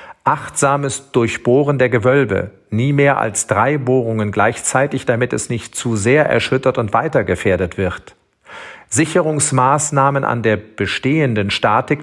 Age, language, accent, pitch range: 40-59, German, German, 110-145 Hz